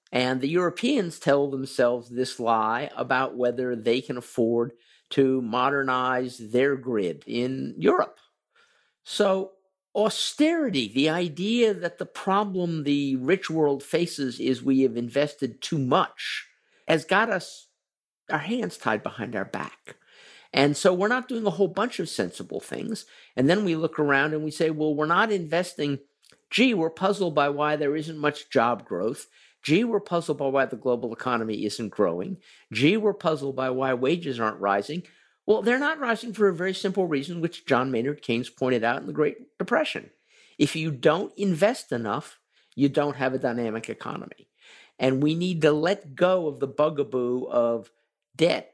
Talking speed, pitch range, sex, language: 165 wpm, 130-185 Hz, male, English